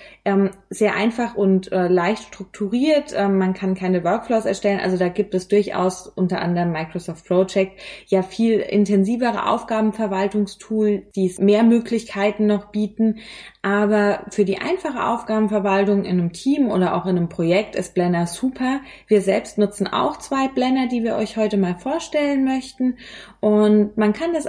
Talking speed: 150 wpm